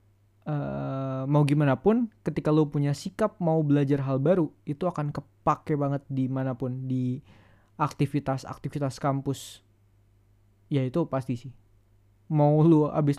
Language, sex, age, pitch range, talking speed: Indonesian, male, 20-39, 130-155 Hz, 125 wpm